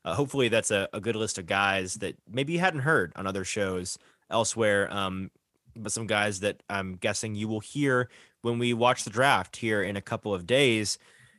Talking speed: 205 wpm